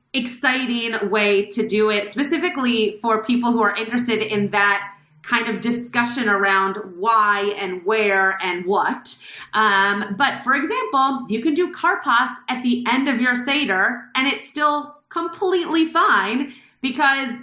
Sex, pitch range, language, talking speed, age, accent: female, 200-245 Hz, English, 145 wpm, 30-49, American